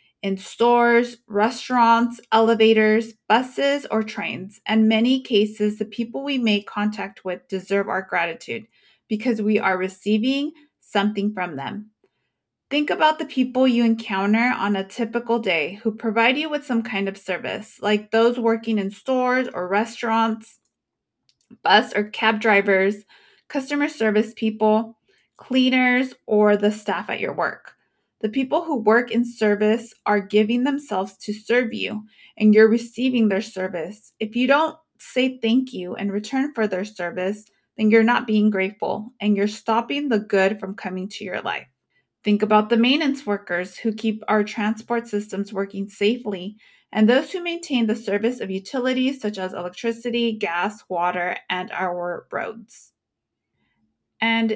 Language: English